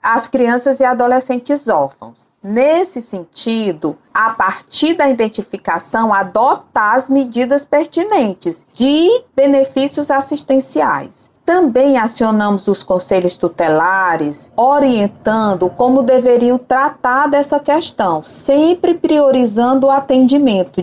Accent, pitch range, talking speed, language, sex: Brazilian, 195-270 Hz, 95 wpm, Portuguese, female